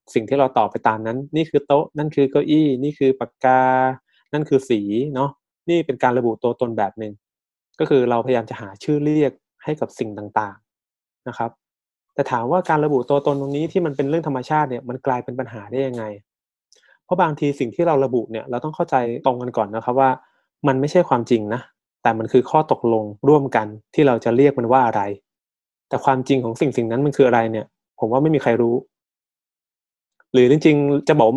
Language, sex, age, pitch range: Thai, male, 20-39, 120-145 Hz